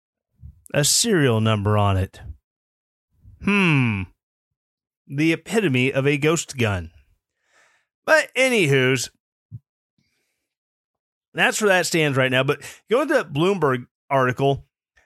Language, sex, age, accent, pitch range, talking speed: English, male, 30-49, American, 110-160 Hz, 105 wpm